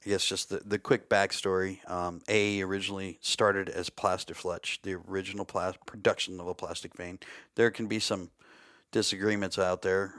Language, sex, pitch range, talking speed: English, male, 95-110 Hz, 155 wpm